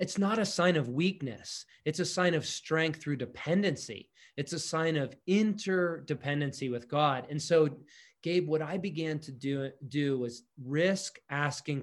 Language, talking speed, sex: English, 160 wpm, male